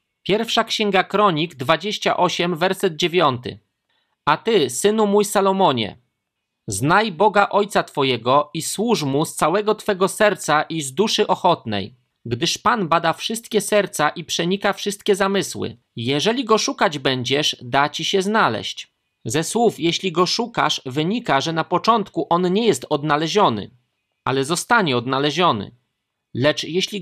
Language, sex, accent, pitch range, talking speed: Polish, male, native, 140-195 Hz, 135 wpm